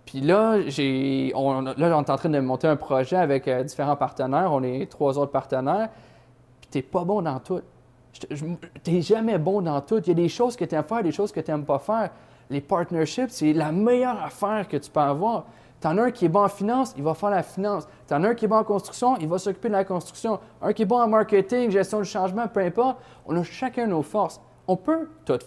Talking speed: 250 wpm